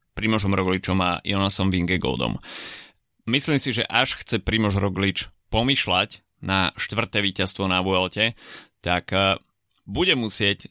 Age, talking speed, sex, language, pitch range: 30-49, 125 wpm, male, Slovak, 95-110 Hz